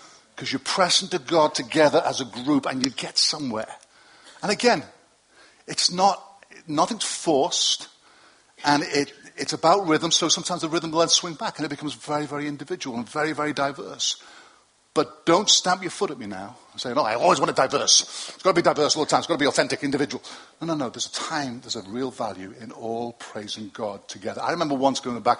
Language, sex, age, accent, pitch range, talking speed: English, male, 50-69, British, 125-165 Hz, 220 wpm